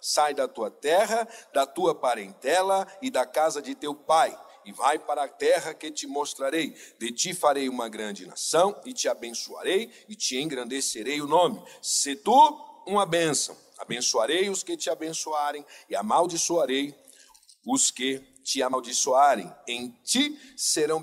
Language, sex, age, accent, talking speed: Portuguese, male, 60-79, Brazilian, 150 wpm